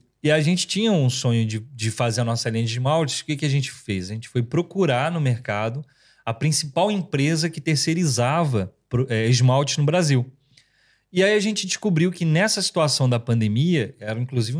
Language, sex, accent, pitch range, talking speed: Portuguese, male, Brazilian, 125-170 Hz, 190 wpm